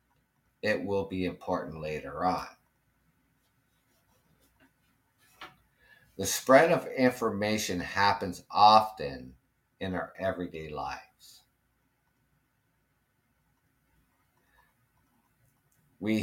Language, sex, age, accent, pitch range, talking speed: English, male, 50-69, American, 100-135 Hz, 65 wpm